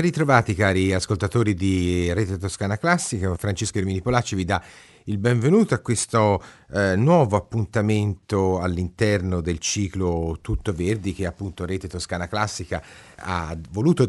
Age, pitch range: 40-59, 90-120 Hz